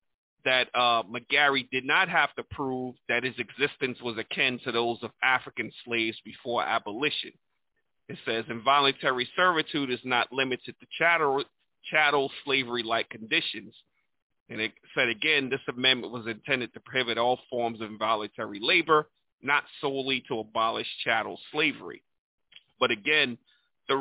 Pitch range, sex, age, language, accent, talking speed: 120-140 Hz, male, 40-59, English, American, 140 wpm